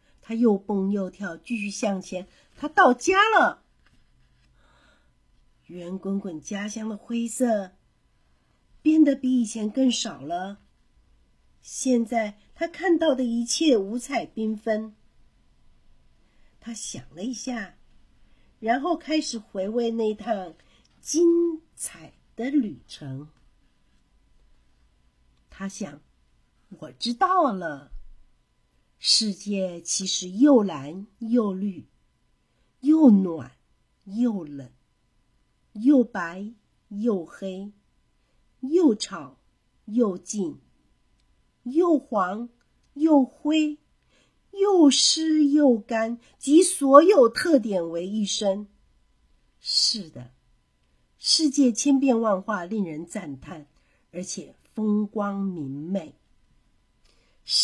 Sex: female